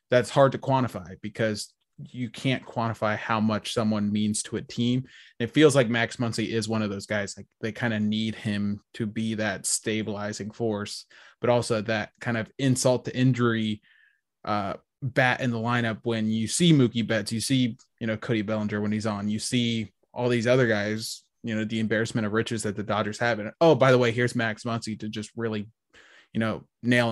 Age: 20-39